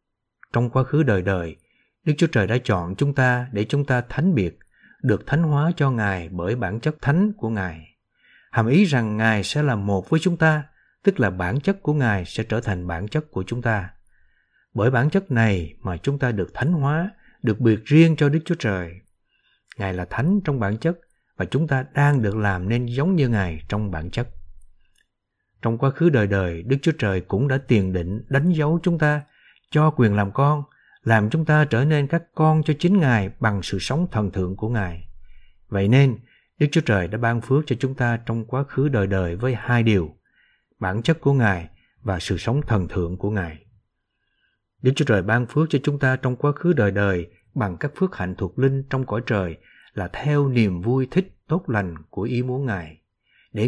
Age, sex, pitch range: 60-79, male, 100-145 Hz